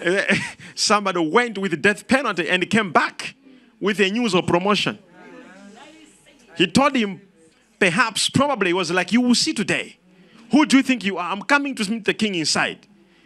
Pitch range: 170-230 Hz